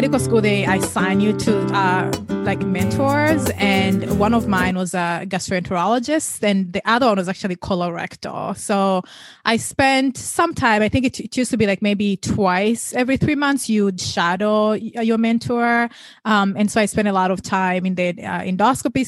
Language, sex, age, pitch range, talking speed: English, female, 20-39, 185-230 Hz, 190 wpm